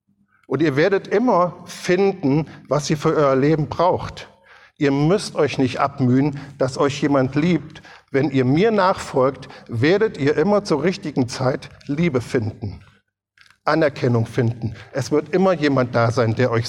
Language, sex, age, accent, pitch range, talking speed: German, male, 50-69, German, 130-170 Hz, 150 wpm